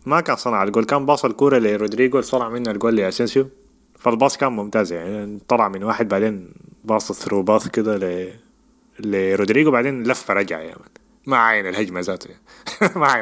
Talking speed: 160 wpm